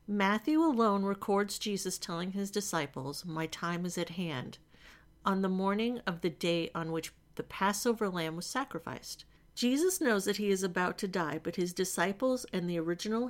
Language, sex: English, female